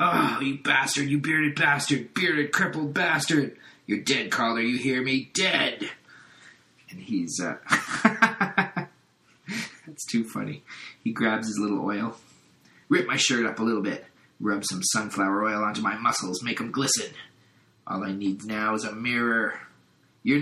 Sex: male